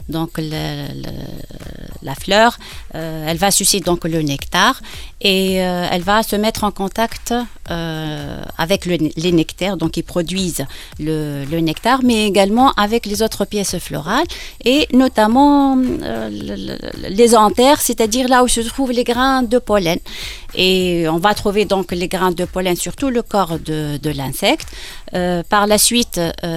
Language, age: Arabic, 30-49